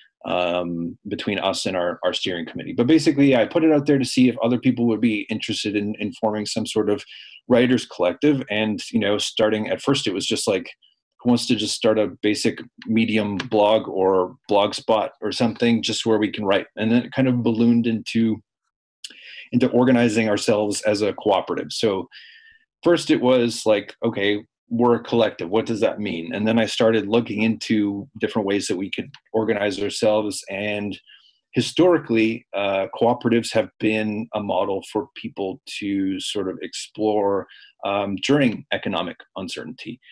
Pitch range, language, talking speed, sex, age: 100-120 Hz, English, 175 wpm, male, 30-49